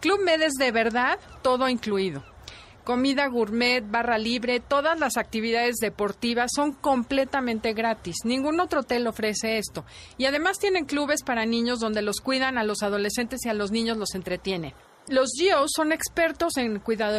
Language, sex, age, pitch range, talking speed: Spanish, female, 40-59, 210-270 Hz, 170 wpm